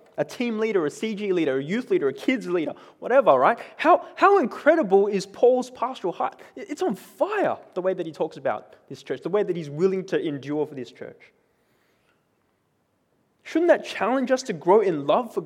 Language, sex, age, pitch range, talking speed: English, male, 20-39, 180-235 Hz, 200 wpm